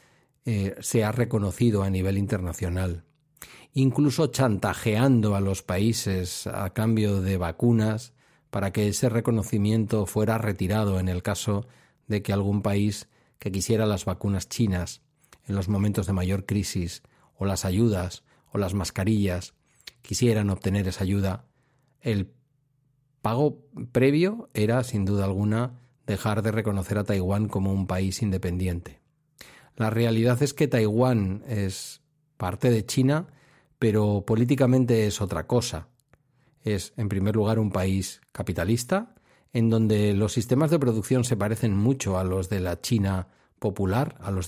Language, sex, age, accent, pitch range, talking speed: Spanish, male, 40-59, Spanish, 100-125 Hz, 140 wpm